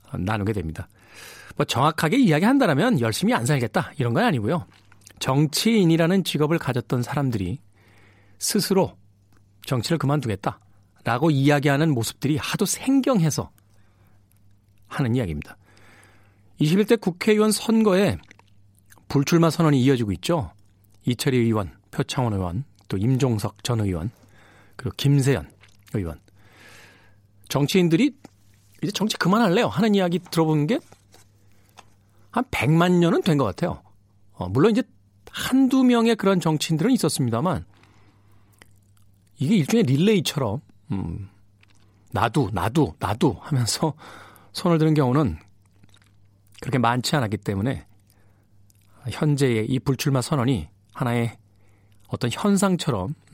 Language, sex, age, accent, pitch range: Korean, male, 40-59, native, 100-155 Hz